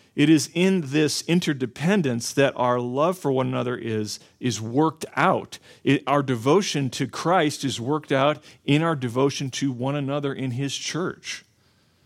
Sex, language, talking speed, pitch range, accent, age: male, English, 155 wpm, 120-150 Hz, American, 40-59